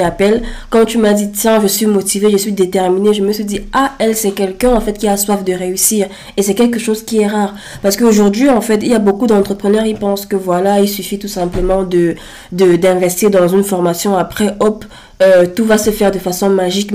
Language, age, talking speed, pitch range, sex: French, 20-39, 235 wpm, 190-215 Hz, female